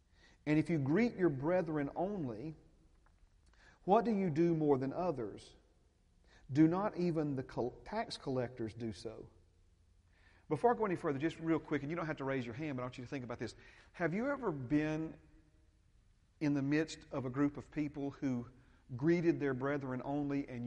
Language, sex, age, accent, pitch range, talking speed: English, male, 40-59, American, 110-155 Hz, 185 wpm